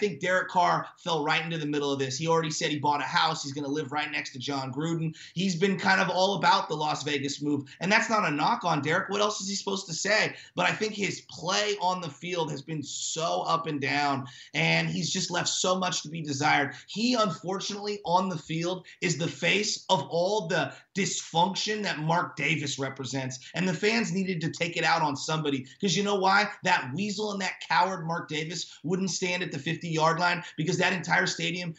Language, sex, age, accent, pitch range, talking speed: English, male, 30-49, American, 155-185 Hz, 230 wpm